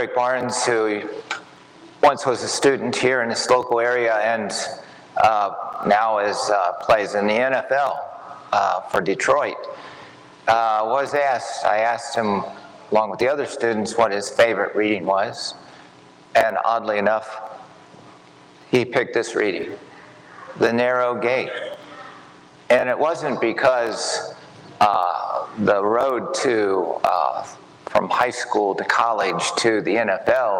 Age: 50-69